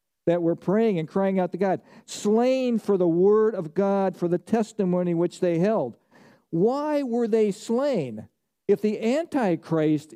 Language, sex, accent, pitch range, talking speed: English, male, American, 170-215 Hz, 160 wpm